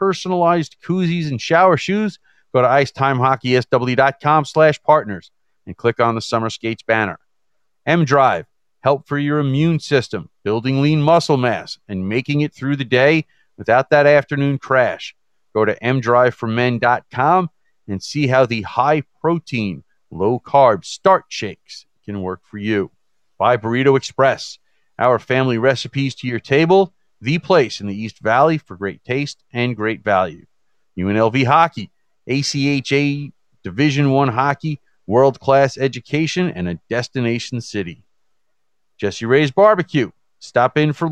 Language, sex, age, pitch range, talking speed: English, male, 40-59, 120-150 Hz, 140 wpm